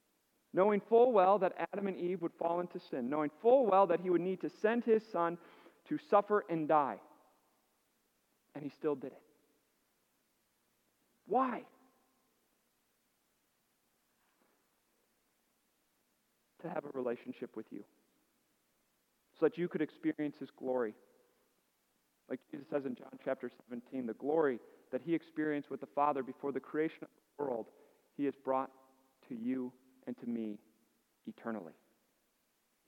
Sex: male